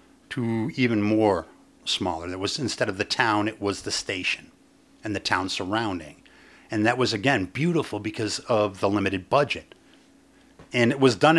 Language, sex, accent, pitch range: English, male, American, 110-145 Hz